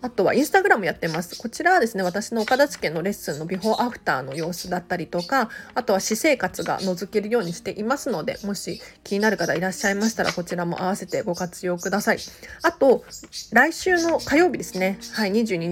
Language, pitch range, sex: Japanese, 175-230 Hz, female